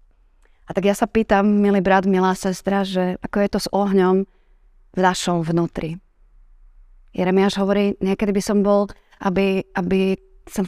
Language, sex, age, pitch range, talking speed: Slovak, female, 30-49, 180-200 Hz, 150 wpm